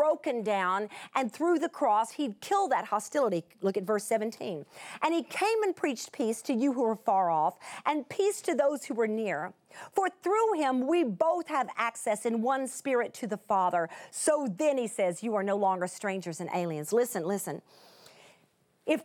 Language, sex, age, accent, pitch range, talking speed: English, female, 40-59, American, 225-340 Hz, 190 wpm